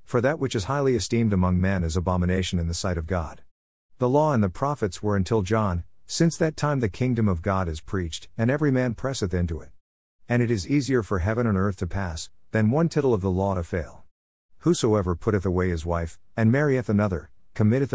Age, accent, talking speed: 50-69, American, 215 wpm